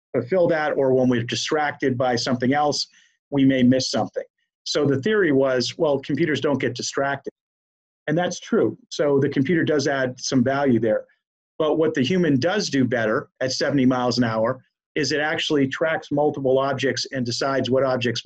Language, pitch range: English, 125-150 Hz